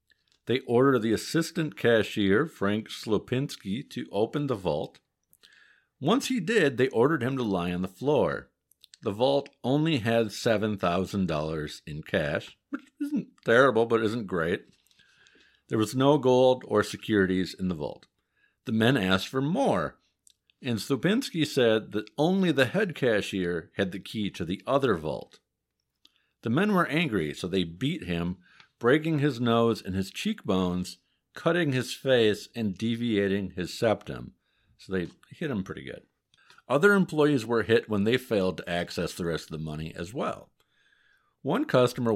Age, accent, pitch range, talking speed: 50-69, American, 95-140 Hz, 155 wpm